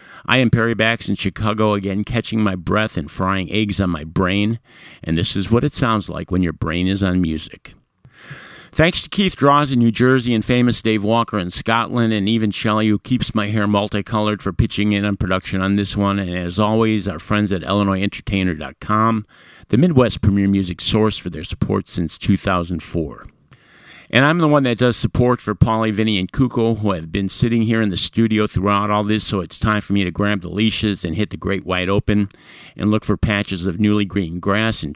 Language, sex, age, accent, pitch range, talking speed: English, male, 50-69, American, 95-115 Hz, 210 wpm